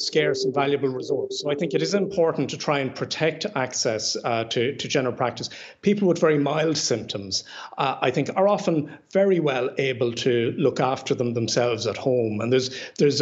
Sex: male